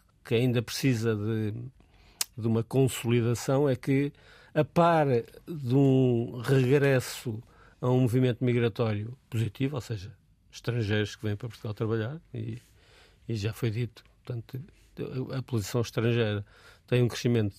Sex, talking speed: male, 135 wpm